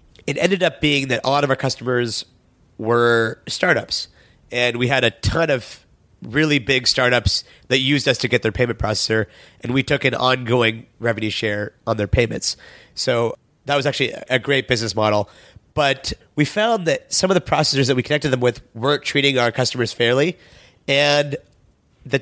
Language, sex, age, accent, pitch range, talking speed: English, male, 30-49, American, 115-140 Hz, 180 wpm